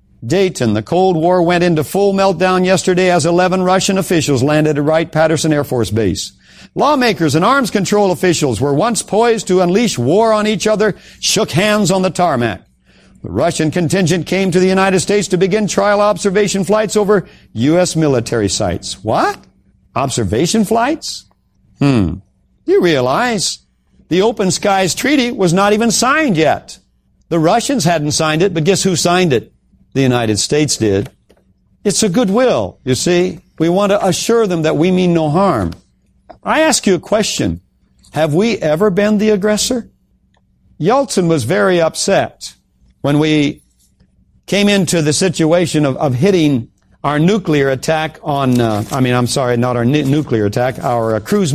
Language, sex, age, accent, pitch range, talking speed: English, male, 60-79, American, 145-205 Hz, 160 wpm